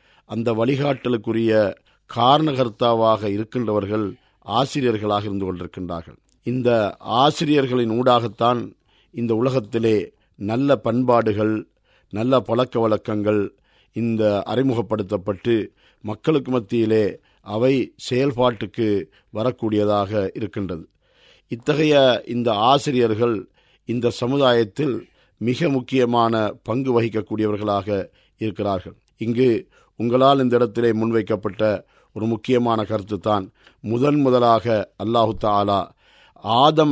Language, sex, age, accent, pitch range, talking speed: Tamil, male, 50-69, native, 105-130 Hz, 75 wpm